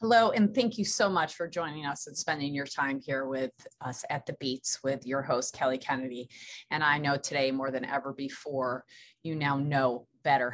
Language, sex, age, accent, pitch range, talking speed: English, female, 30-49, American, 135-160 Hz, 205 wpm